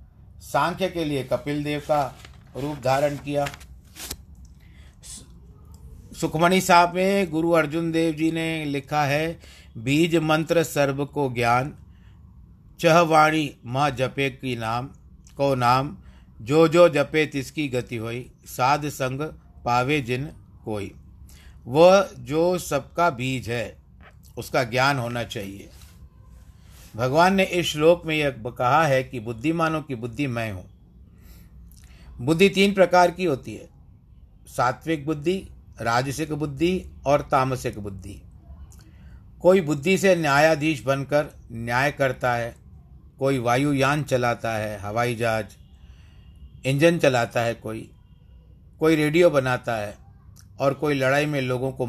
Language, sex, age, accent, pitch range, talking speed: Hindi, male, 50-69, native, 95-150 Hz, 125 wpm